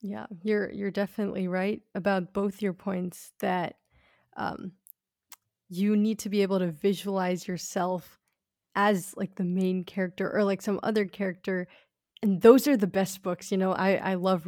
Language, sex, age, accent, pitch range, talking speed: English, female, 20-39, American, 180-205 Hz, 165 wpm